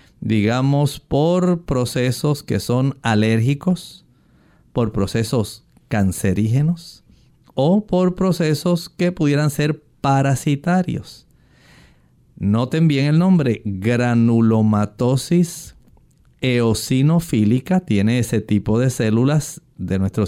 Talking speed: 85 wpm